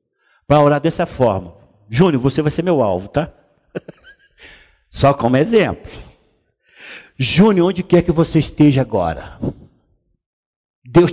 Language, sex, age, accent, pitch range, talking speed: Portuguese, male, 50-69, Brazilian, 115-165 Hz, 120 wpm